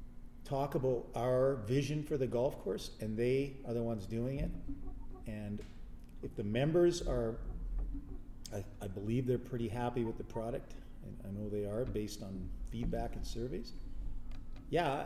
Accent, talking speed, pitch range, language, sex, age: American, 160 wpm, 105-135 Hz, English, male, 40-59